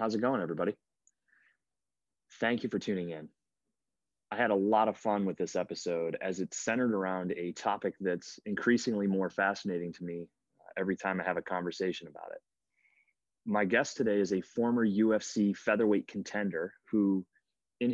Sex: male